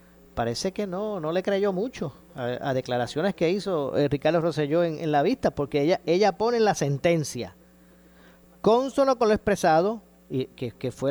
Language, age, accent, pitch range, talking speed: Spanish, 40-59, American, 125-175 Hz, 180 wpm